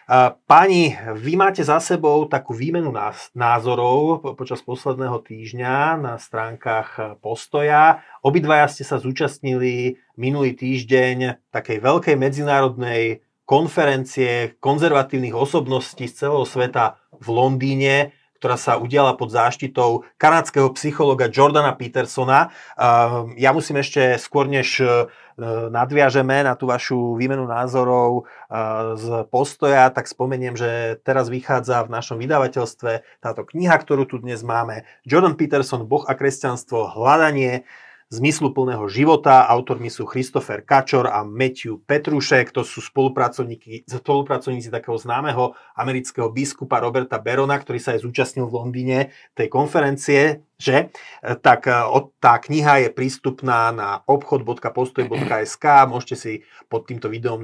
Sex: male